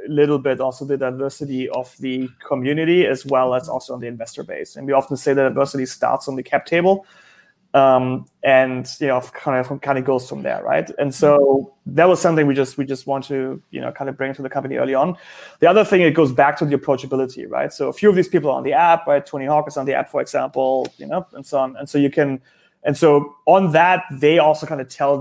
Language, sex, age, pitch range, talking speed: English, male, 30-49, 135-160 Hz, 255 wpm